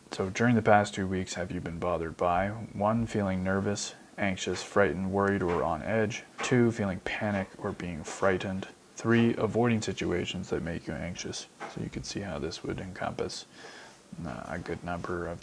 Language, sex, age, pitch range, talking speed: English, male, 20-39, 95-110 Hz, 180 wpm